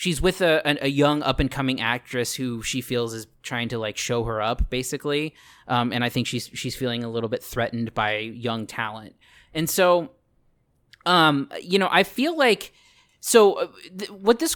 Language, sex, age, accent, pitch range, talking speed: English, male, 20-39, American, 120-150 Hz, 185 wpm